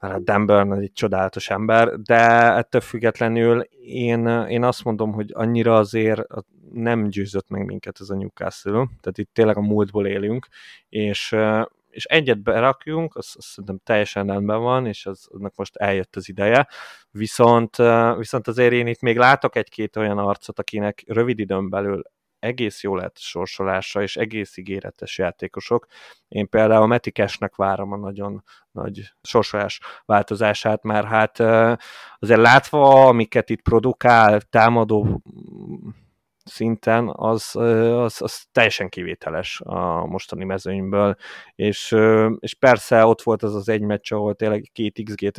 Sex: male